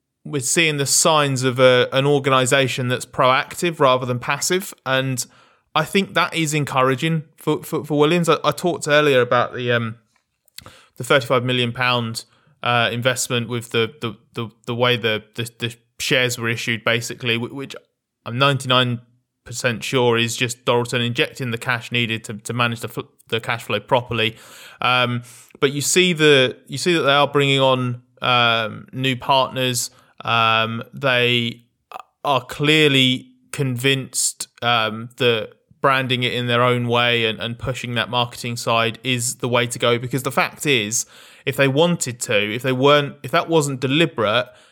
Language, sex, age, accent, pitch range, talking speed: English, male, 20-39, British, 120-140 Hz, 165 wpm